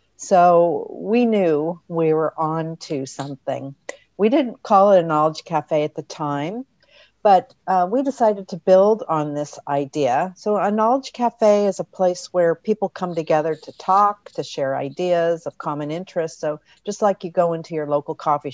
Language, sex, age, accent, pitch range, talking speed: English, female, 50-69, American, 150-200 Hz, 180 wpm